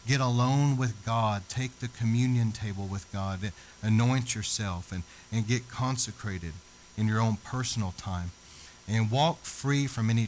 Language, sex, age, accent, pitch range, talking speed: English, male, 40-59, American, 95-120 Hz, 150 wpm